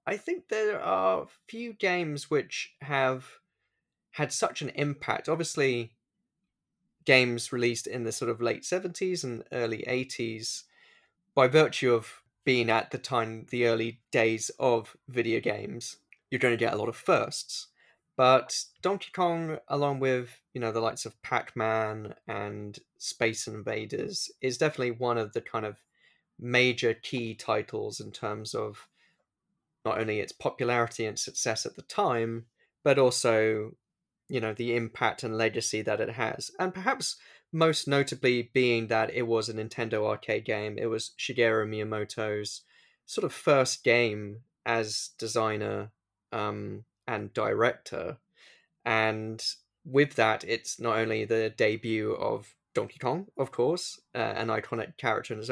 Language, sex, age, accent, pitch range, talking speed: English, male, 10-29, British, 110-130 Hz, 150 wpm